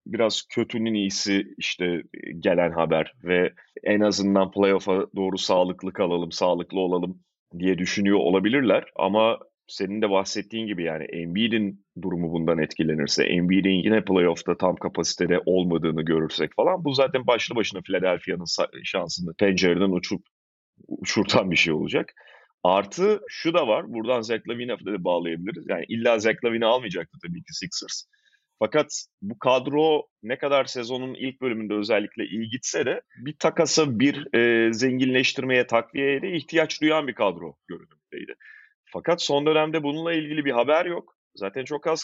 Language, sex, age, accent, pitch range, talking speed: Turkish, male, 30-49, native, 95-155 Hz, 140 wpm